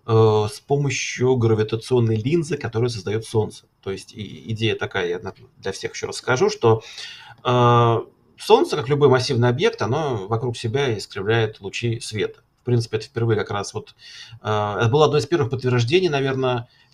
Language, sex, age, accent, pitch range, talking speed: Russian, male, 30-49, native, 115-140 Hz, 150 wpm